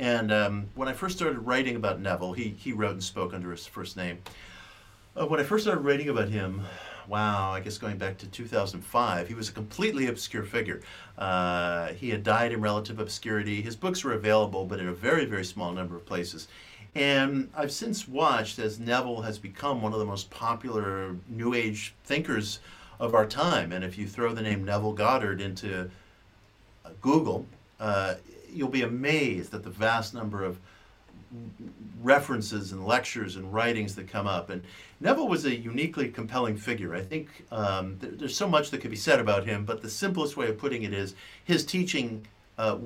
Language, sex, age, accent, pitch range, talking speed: English, male, 50-69, American, 100-125 Hz, 190 wpm